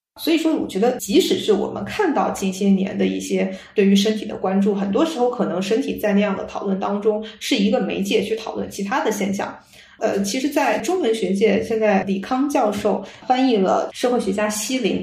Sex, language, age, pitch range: female, Chinese, 20-39, 195-230 Hz